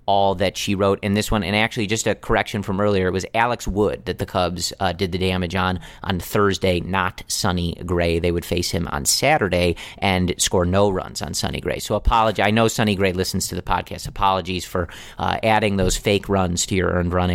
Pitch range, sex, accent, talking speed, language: 95-115 Hz, male, American, 220 wpm, English